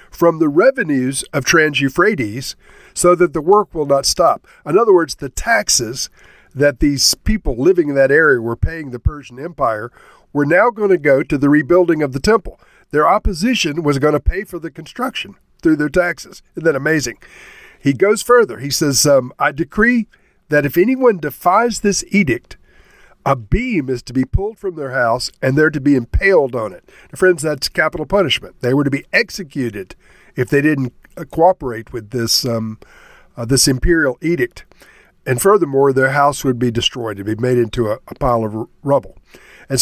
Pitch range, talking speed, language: 130-180 Hz, 185 wpm, English